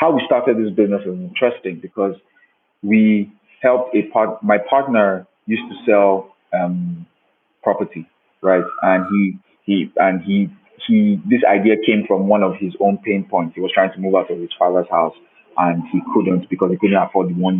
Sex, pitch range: male, 95-110 Hz